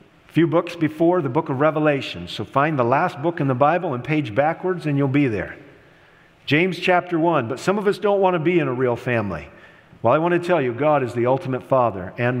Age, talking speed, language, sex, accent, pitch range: 50-69, 235 wpm, English, male, American, 145-185 Hz